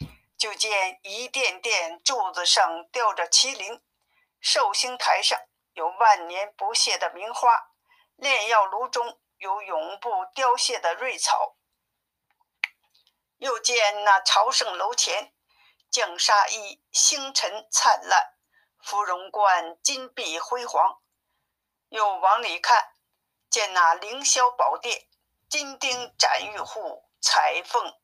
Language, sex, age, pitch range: Chinese, female, 50-69, 195-265 Hz